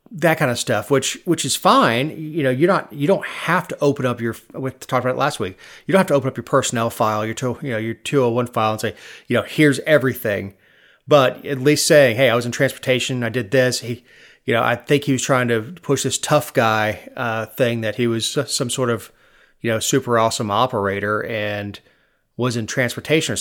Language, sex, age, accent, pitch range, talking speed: English, male, 30-49, American, 115-140 Hz, 230 wpm